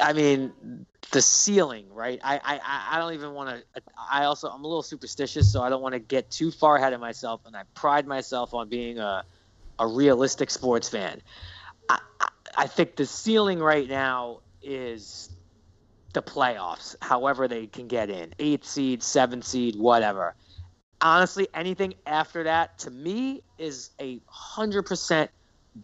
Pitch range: 130-175 Hz